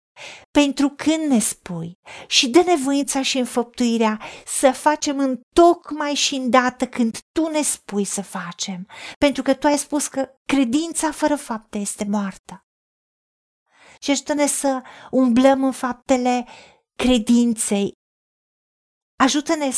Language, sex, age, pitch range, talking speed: Romanian, female, 40-59, 230-280 Hz, 125 wpm